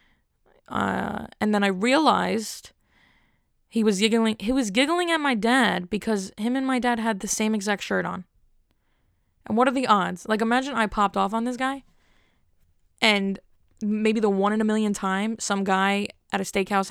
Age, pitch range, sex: 10-29, 190-230 Hz, female